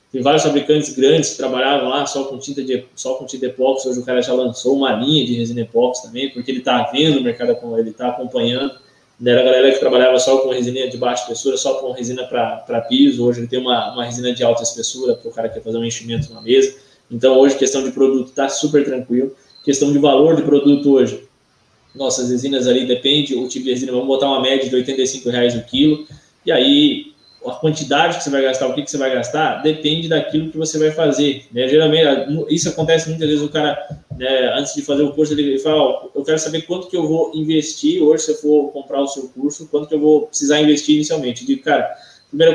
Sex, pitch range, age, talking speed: male, 130-155 Hz, 20-39, 230 wpm